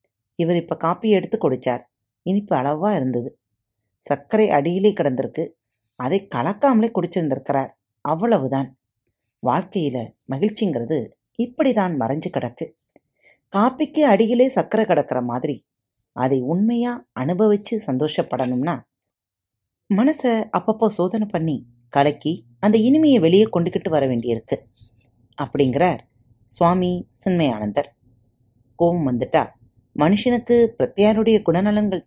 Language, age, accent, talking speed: Tamil, 30-49, native, 90 wpm